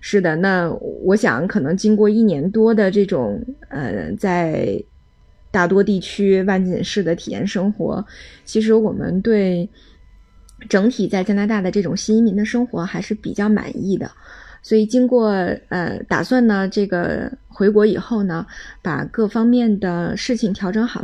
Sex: female